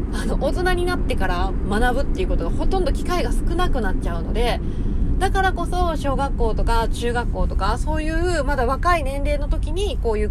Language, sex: Japanese, female